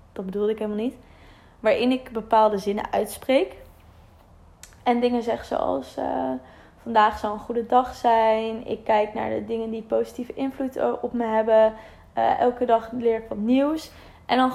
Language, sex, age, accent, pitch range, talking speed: Dutch, female, 20-39, Dutch, 215-250 Hz, 170 wpm